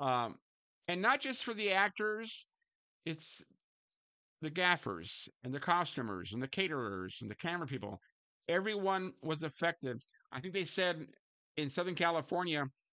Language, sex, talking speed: English, male, 135 wpm